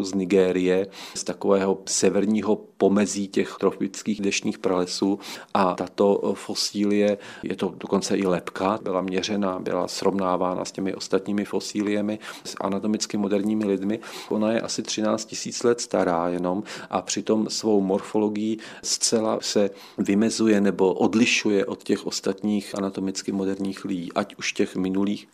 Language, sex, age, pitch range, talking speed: Czech, male, 40-59, 95-105 Hz, 135 wpm